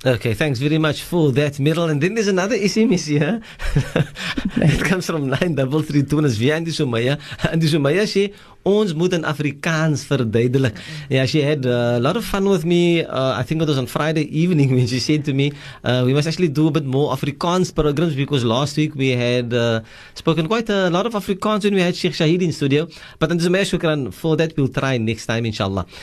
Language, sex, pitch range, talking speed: English, male, 130-180 Hz, 205 wpm